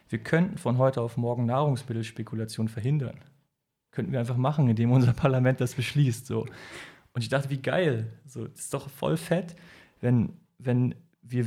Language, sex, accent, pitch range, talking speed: German, male, German, 120-150 Hz, 155 wpm